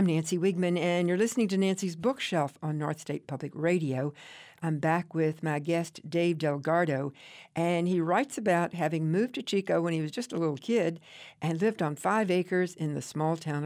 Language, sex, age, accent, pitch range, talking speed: English, female, 60-79, American, 155-190 Hz, 200 wpm